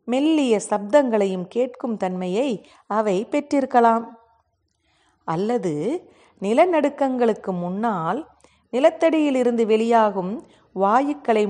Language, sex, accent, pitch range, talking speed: Tamil, female, native, 200-280 Hz, 65 wpm